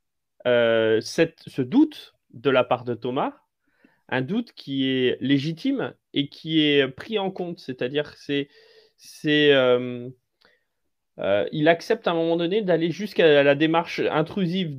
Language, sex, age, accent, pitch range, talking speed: French, male, 20-39, French, 130-170 Hz, 145 wpm